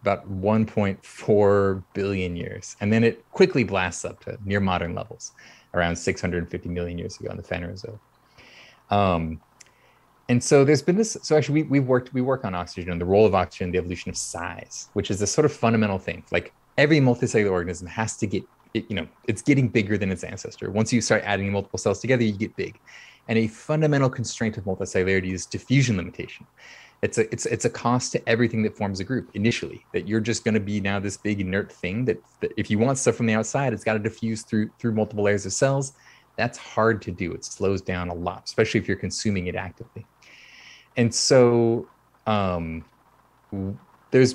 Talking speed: 205 wpm